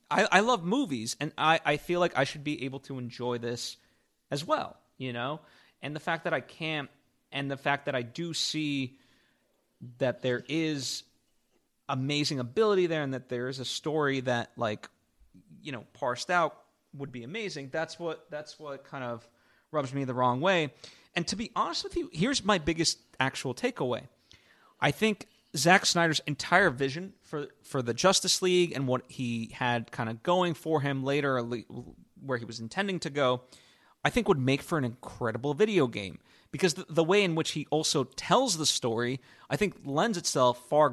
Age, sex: 30-49, male